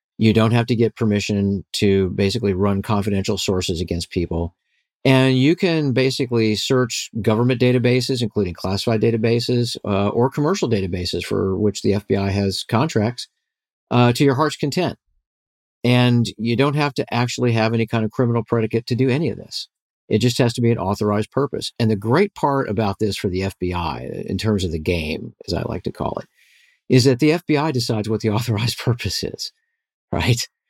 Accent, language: American, English